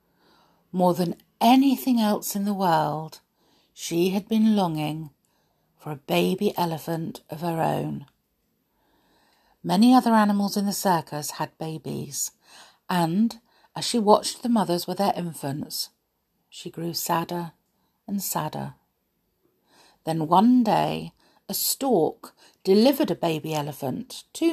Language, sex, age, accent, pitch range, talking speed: English, female, 50-69, British, 145-200 Hz, 120 wpm